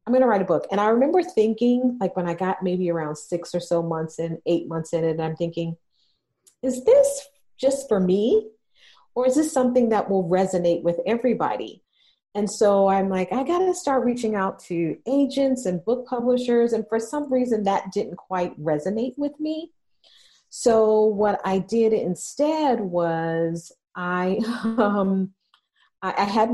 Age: 40-59